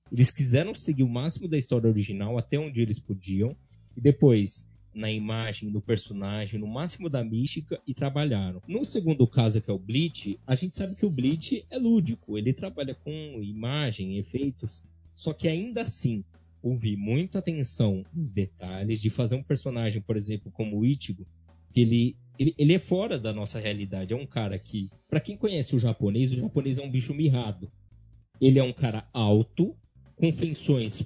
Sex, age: male, 20-39